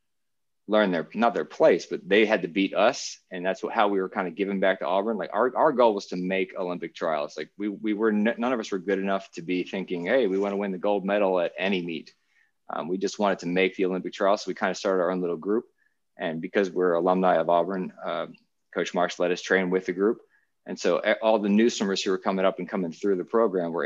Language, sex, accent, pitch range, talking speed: English, male, American, 90-100 Hz, 260 wpm